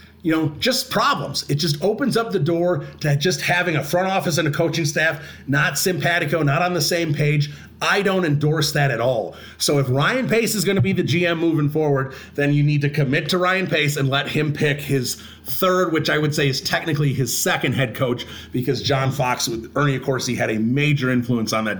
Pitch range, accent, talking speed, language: 130-165 Hz, American, 230 wpm, English